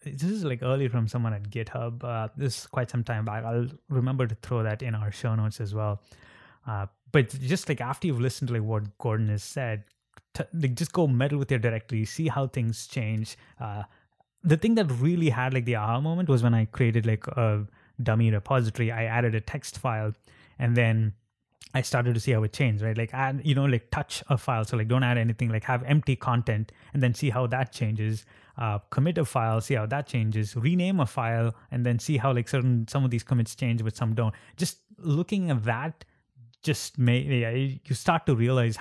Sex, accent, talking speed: male, Indian, 220 wpm